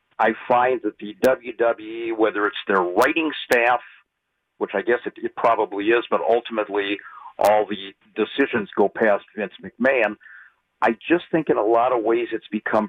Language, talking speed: English, 170 wpm